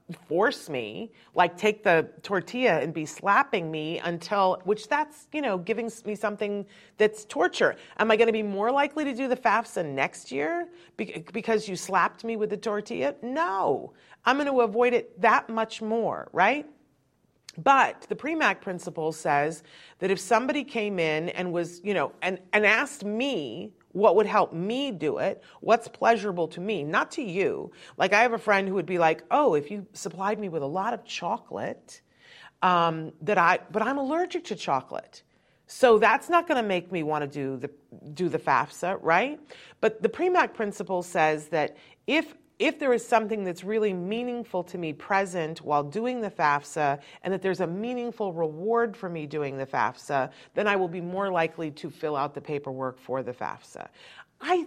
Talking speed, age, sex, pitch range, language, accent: 190 wpm, 40-59, female, 165-230 Hz, English, American